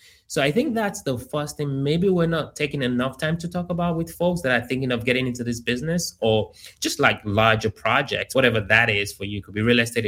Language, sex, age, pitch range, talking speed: English, male, 20-39, 110-155 Hz, 245 wpm